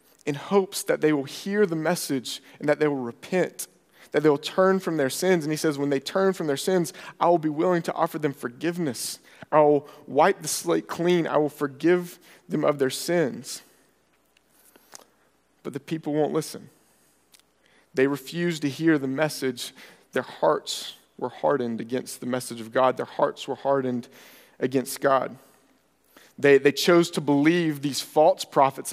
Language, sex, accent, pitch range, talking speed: English, male, American, 135-170 Hz, 175 wpm